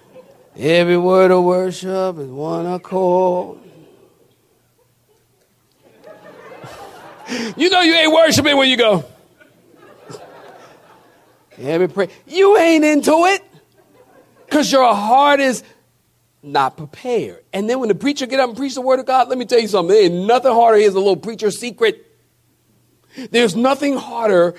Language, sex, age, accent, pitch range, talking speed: English, male, 40-59, American, 200-275 Hz, 145 wpm